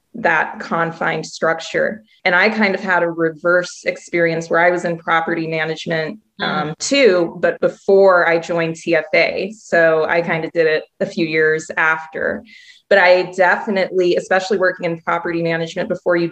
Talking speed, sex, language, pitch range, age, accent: 160 wpm, female, English, 165-190 Hz, 20-39, American